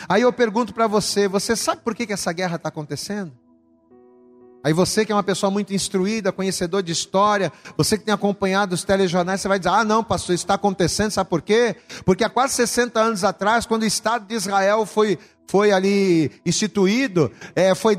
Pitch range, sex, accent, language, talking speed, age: 200-285 Hz, male, Brazilian, Portuguese, 195 wpm, 40-59